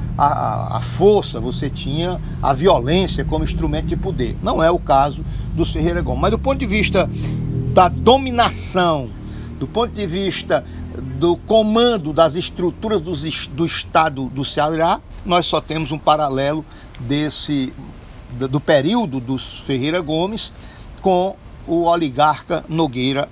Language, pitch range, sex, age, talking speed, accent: Portuguese, 145-190 Hz, male, 60-79, 130 wpm, Brazilian